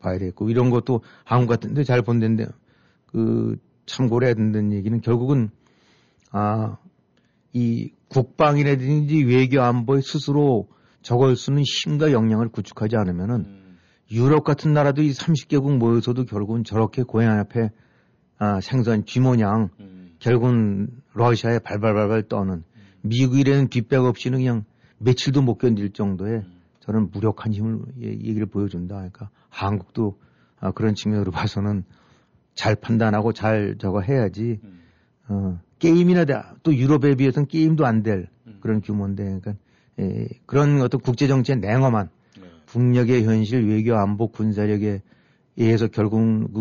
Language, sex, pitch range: Korean, male, 105-125 Hz